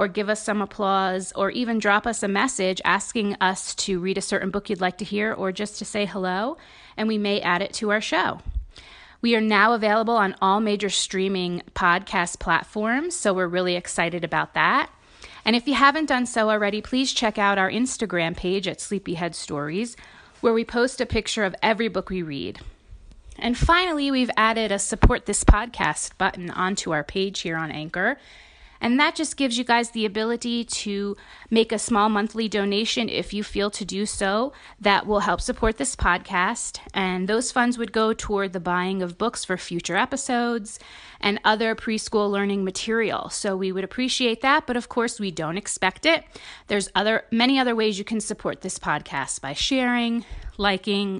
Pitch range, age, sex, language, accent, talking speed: 190-235 Hz, 30-49, female, English, American, 190 wpm